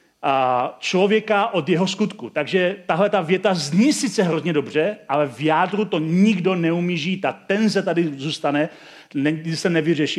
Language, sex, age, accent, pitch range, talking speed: Czech, male, 40-59, native, 145-190 Hz, 145 wpm